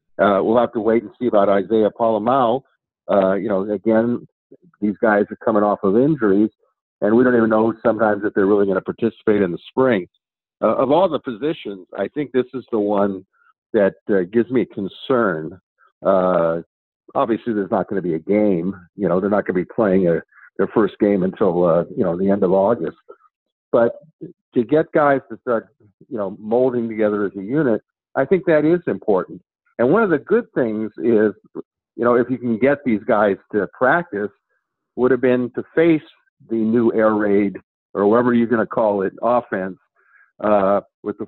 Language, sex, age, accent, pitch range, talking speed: English, male, 50-69, American, 100-125 Hz, 200 wpm